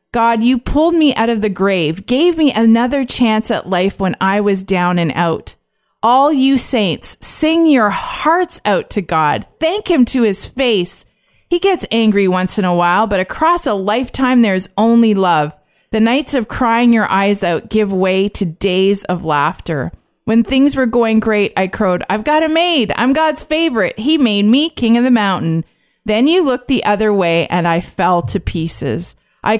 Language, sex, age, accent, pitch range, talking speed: English, female, 30-49, American, 190-250 Hz, 190 wpm